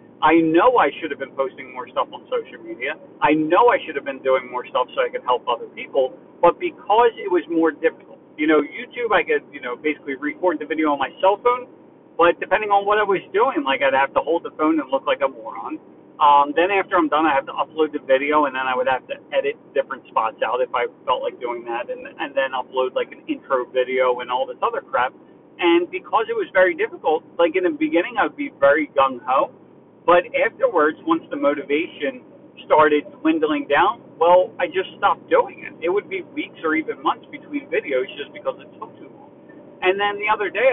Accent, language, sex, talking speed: American, English, male, 230 wpm